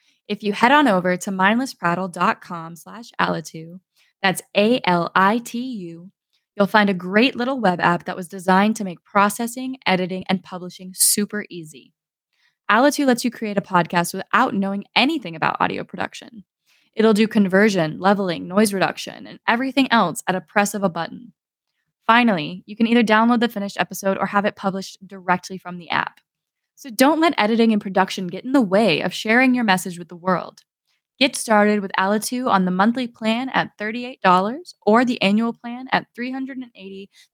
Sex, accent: female, American